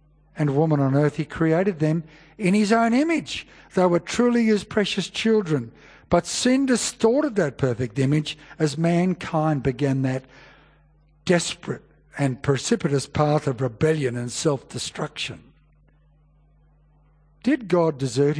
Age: 60-79